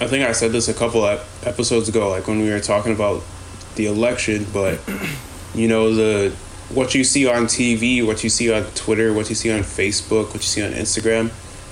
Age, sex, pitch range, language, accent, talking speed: 20-39, male, 95-115 Hz, English, American, 210 wpm